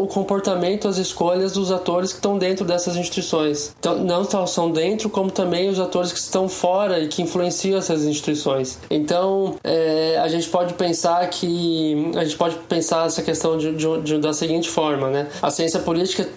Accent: Brazilian